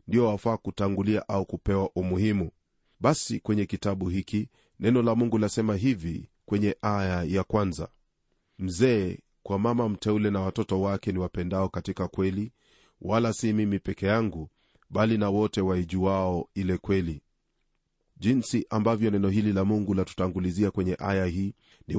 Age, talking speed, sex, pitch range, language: 40-59, 140 wpm, male, 95-110 Hz, Swahili